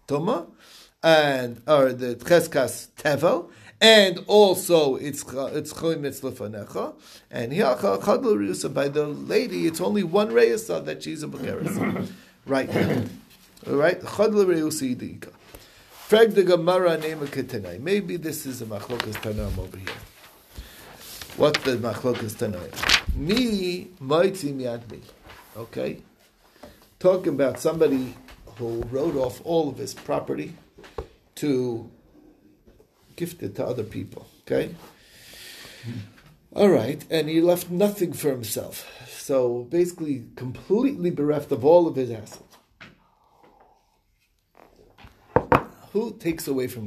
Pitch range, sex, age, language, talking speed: 125-180 Hz, male, 50-69, English, 95 wpm